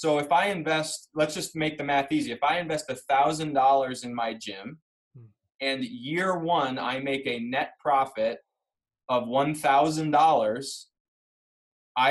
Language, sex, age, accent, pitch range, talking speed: English, male, 20-39, American, 130-155 Hz, 135 wpm